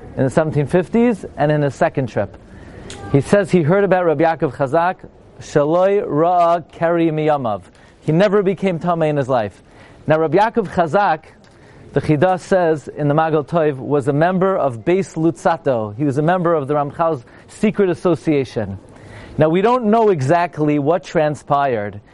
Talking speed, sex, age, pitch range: 160 wpm, male, 40-59, 130-175 Hz